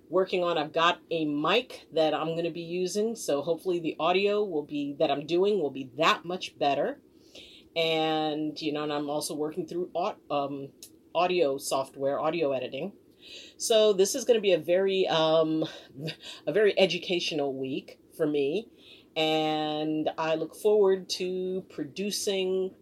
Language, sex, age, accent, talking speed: English, female, 40-59, American, 160 wpm